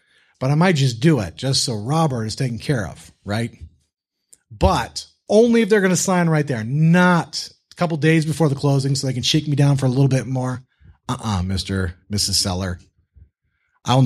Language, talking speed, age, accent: English, 200 wpm, 30-49, American